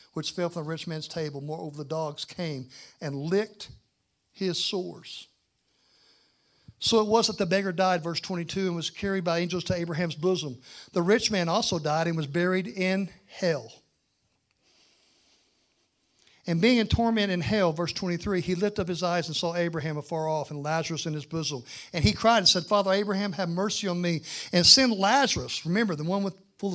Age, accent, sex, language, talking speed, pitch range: 60-79, American, male, English, 190 wpm, 160-200 Hz